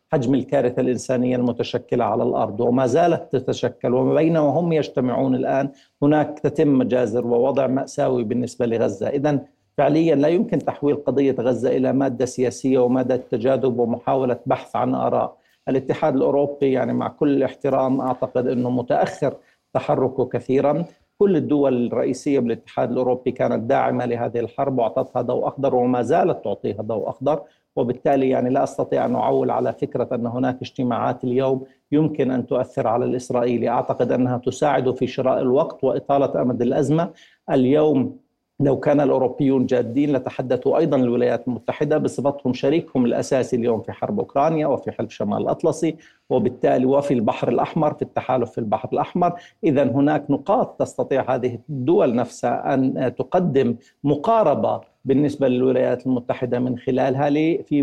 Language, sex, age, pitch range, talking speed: Arabic, male, 50-69, 125-145 Hz, 140 wpm